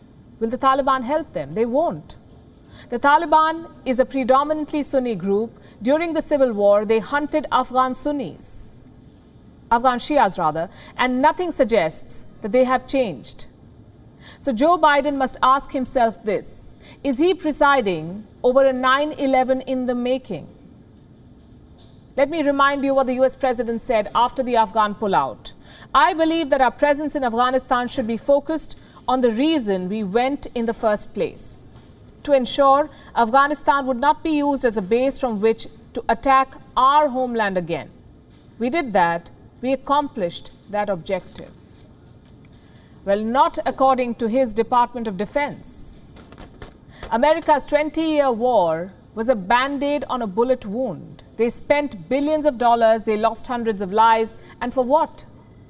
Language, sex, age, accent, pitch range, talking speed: English, female, 50-69, Indian, 225-285 Hz, 145 wpm